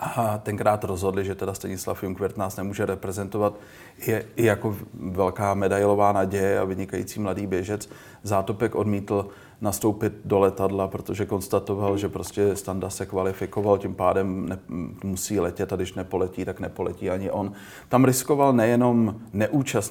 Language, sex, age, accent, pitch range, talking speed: Czech, male, 30-49, native, 100-115 Hz, 140 wpm